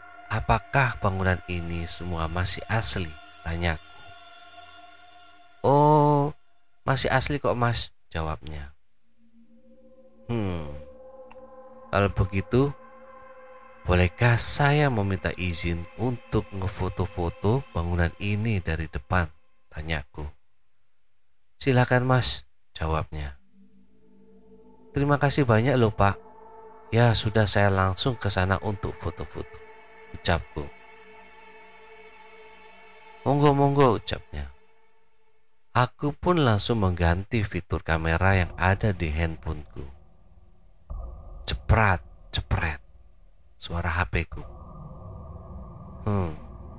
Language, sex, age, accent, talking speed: Indonesian, male, 30-49, native, 80 wpm